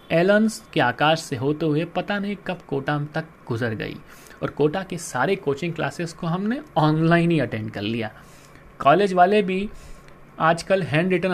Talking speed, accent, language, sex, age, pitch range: 170 wpm, native, Hindi, male, 30-49, 135-180 Hz